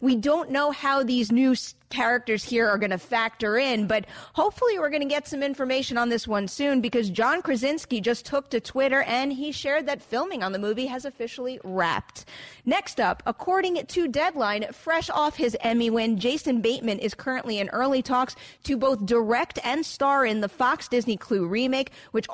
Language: English